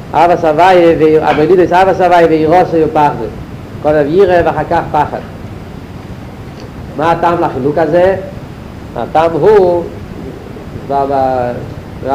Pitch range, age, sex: 140-175 Hz, 50-69, male